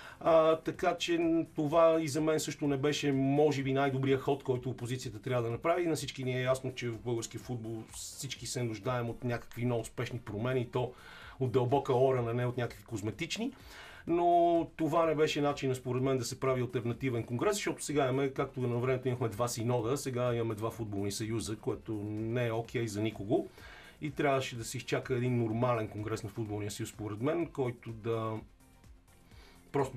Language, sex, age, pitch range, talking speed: Bulgarian, male, 40-59, 115-140 Hz, 190 wpm